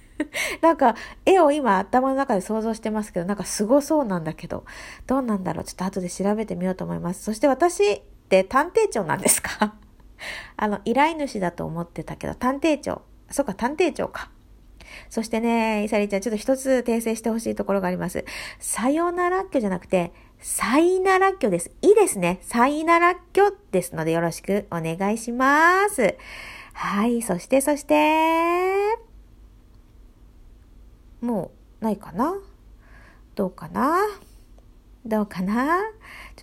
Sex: female